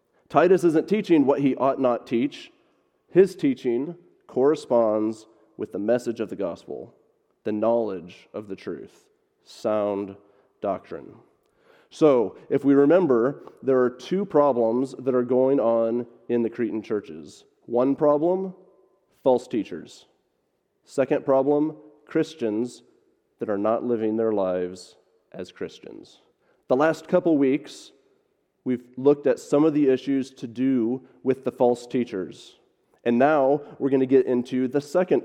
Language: English